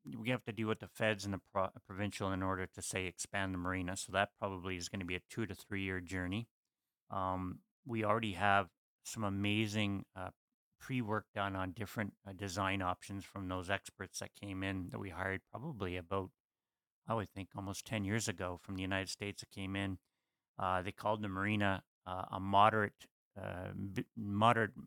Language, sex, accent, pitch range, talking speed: English, male, American, 95-105 Hz, 195 wpm